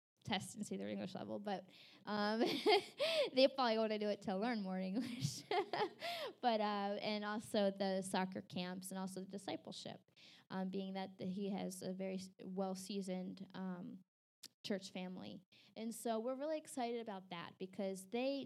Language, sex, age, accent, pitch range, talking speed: English, female, 10-29, American, 190-230 Hz, 155 wpm